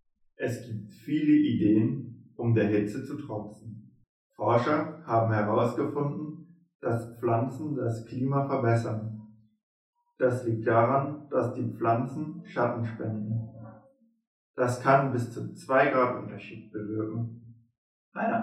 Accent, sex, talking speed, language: German, male, 110 wpm, German